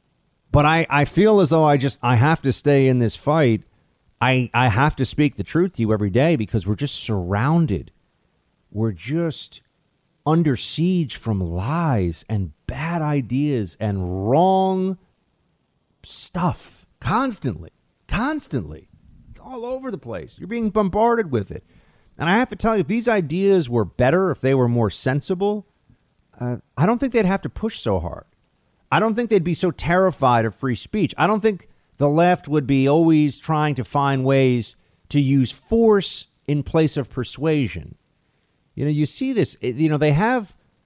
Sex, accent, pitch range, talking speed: male, American, 125-180 Hz, 175 wpm